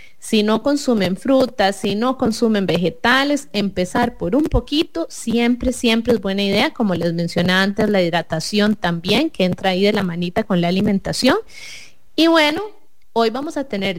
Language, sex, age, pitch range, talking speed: English, female, 30-49, 200-260 Hz, 165 wpm